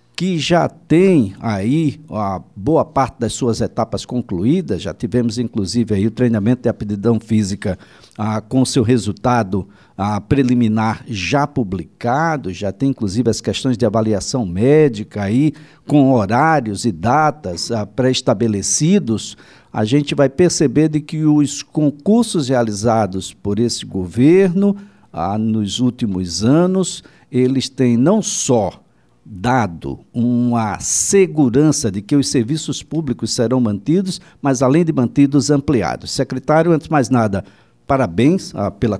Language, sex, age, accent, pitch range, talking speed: Portuguese, male, 60-79, Brazilian, 105-145 Hz, 130 wpm